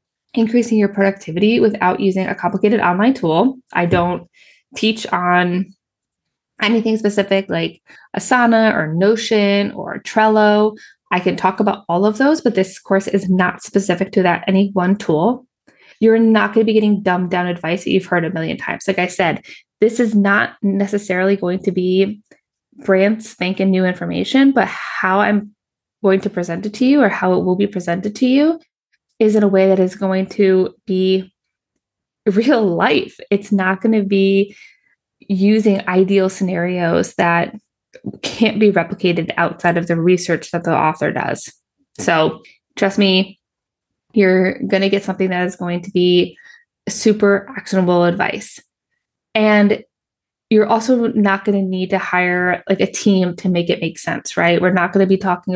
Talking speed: 170 wpm